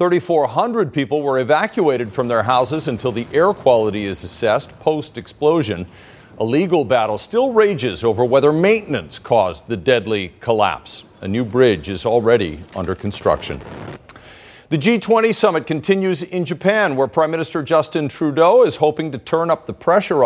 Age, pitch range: 50-69, 125-175 Hz